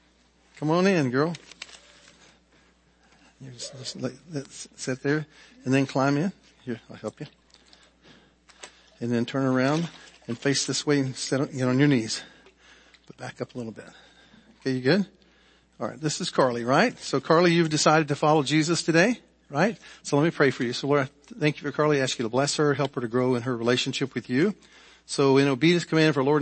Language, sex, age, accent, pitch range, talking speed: English, male, 50-69, American, 130-170 Hz, 210 wpm